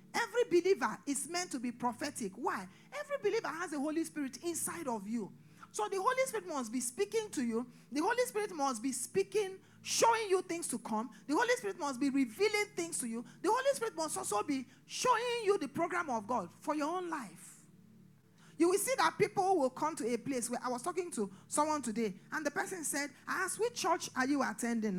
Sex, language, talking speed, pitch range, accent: male, English, 215 wpm, 205-310 Hz, Nigerian